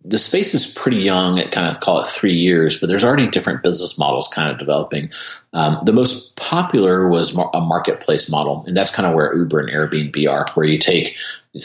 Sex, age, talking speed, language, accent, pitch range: male, 30-49, 215 wpm, English, American, 75-100 Hz